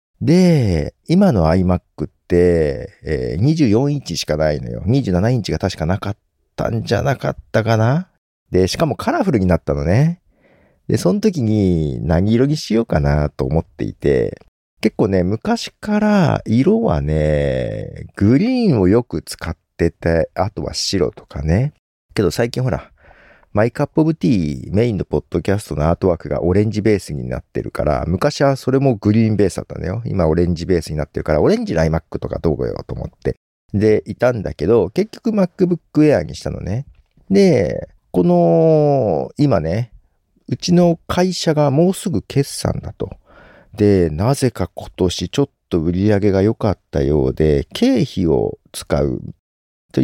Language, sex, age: Japanese, male, 50-69